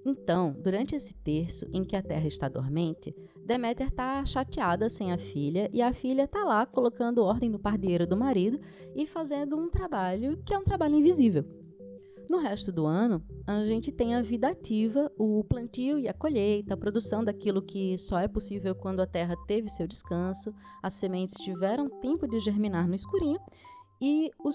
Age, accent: 20-39, Brazilian